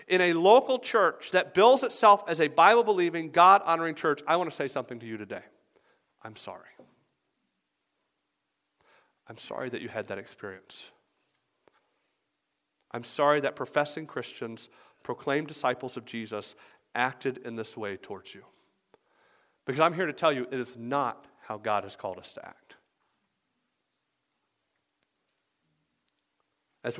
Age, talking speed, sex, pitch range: 40-59, 135 wpm, male, 125-170 Hz